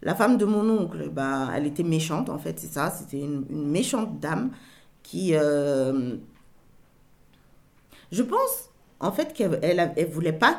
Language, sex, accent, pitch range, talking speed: French, female, French, 165-225 Hz, 160 wpm